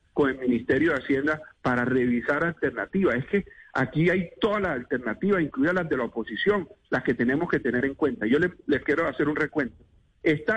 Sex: male